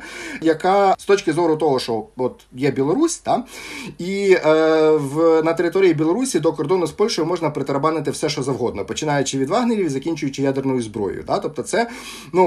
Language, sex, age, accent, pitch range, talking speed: Ukrainian, male, 40-59, native, 130-170 Hz, 170 wpm